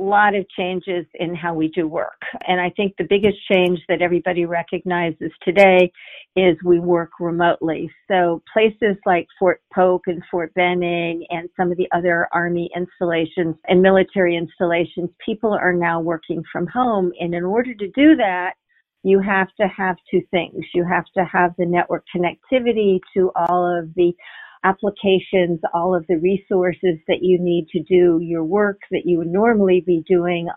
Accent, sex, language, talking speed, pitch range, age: American, female, English, 170 wpm, 175-190 Hz, 50-69